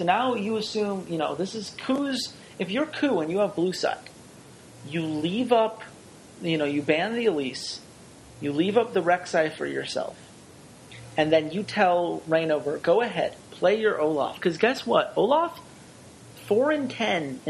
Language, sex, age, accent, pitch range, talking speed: English, male, 30-49, American, 150-205 Hz, 165 wpm